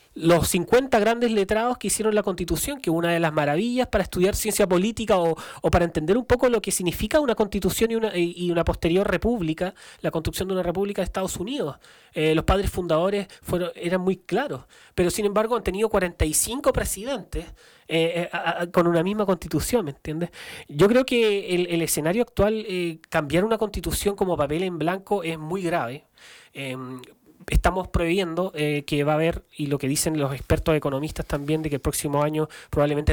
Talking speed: 190 wpm